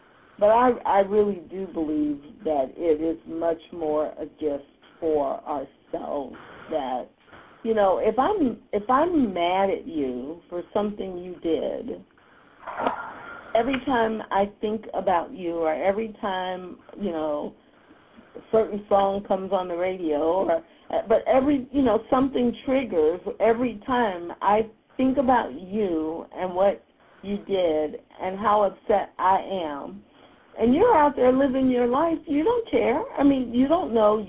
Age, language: 50-69, English